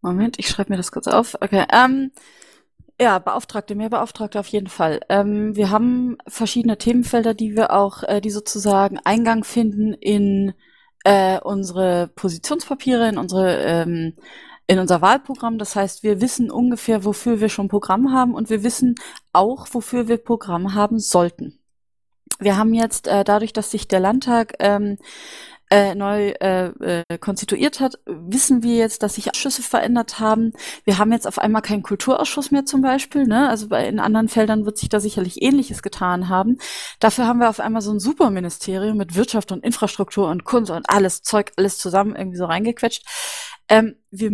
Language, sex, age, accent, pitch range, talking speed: German, female, 20-39, German, 200-245 Hz, 175 wpm